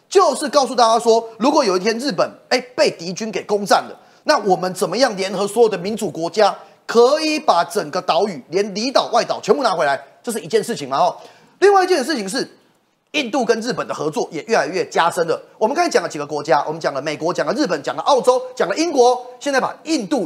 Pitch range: 190-310 Hz